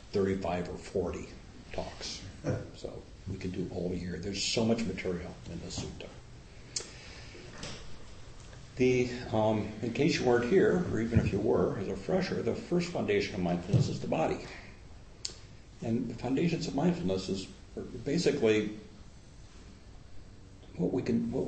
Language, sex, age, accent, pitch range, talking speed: English, male, 60-79, American, 90-105 Hz, 140 wpm